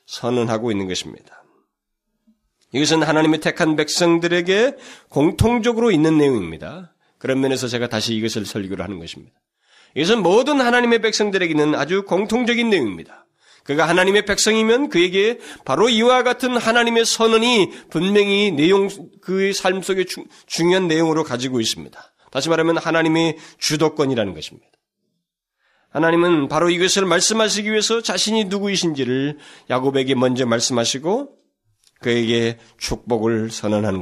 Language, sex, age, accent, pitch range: Korean, male, 30-49, native, 110-185 Hz